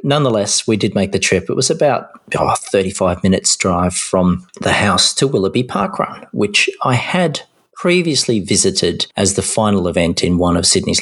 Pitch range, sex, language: 95-115 Hz, male, English